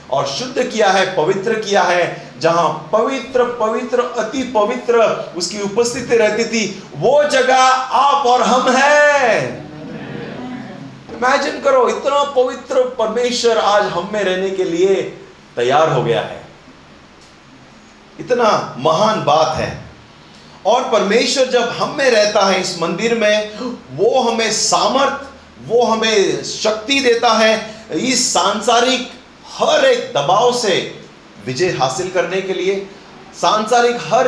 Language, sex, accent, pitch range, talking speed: Hindi, male, native, 185-245 Hz, 120 wpm